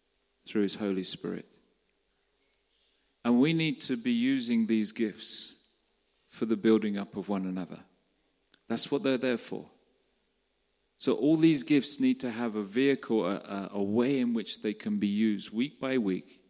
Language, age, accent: English, 40-59, British